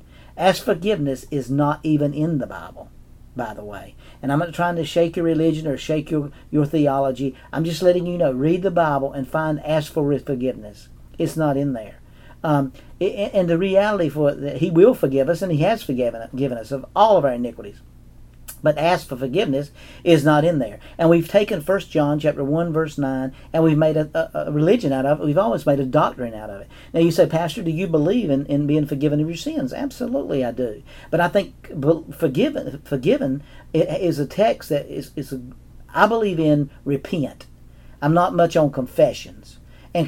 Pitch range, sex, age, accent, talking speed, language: 135-165 Hz, male, 50-69, American, 205 wpm, English